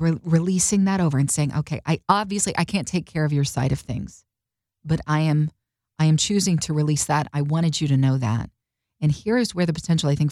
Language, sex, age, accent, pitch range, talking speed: English, female, 40-59, American, 135-185 Hz, 225 wpm